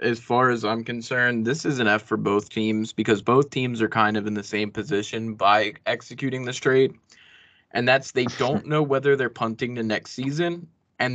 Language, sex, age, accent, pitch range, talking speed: English, male, 20-39, American, 110-135 Hz, 205 wpm